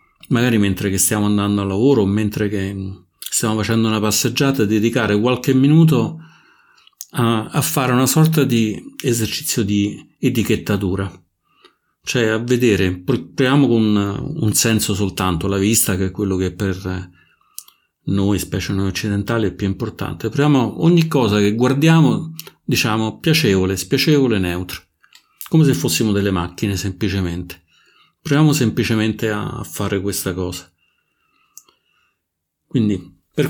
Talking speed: 125 wpm